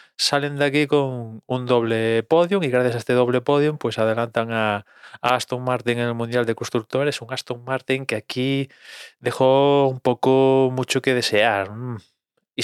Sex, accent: male, Spanish